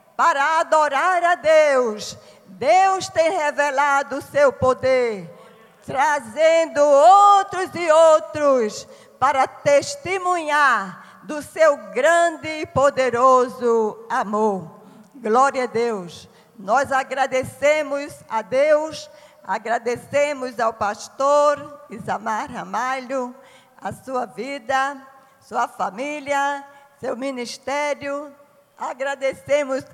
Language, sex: Portuguese, female